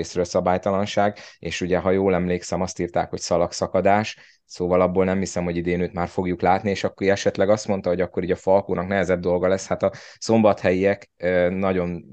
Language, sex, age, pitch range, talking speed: Hungarian, male, 20-39, 85-100 Hz, 190 wpm